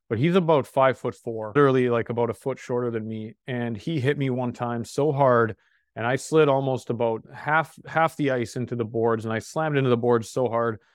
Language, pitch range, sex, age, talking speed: English, 115-135 Hz, male, 30-49, 230 wpm